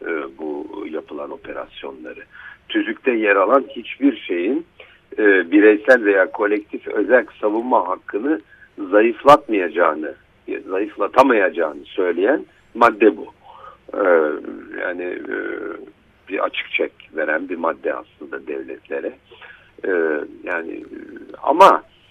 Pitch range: 310-395 Hz